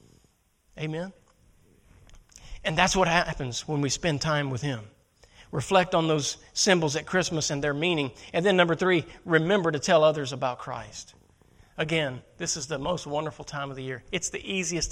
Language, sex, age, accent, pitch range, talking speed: English, male, 40-59, American, 125-165 Hz, 175 wpm